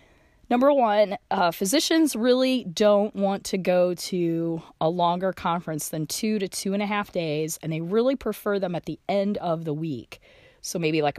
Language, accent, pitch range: English, American, 150-215 Hz